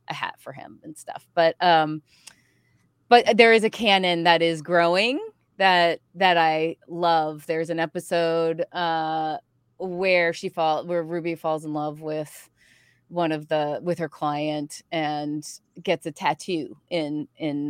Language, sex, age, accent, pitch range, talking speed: English, female, 30-49, American, 155-200 Hz, 155 wpm